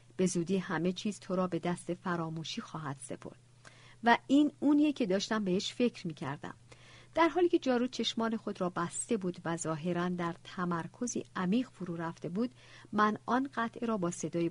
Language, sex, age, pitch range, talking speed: Persian, female, 50-69, 155-220 Hz, 175 wpm